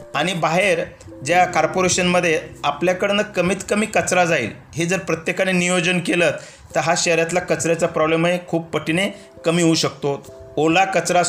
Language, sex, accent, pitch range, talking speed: Hindi, male, native, 160-205 Hz, 150 wpm